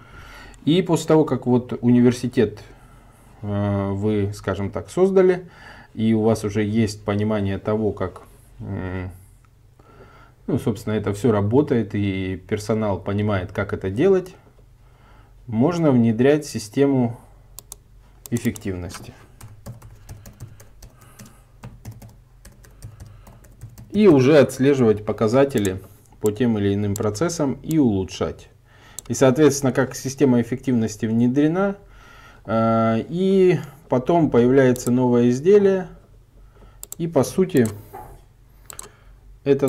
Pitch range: 105-130 Hz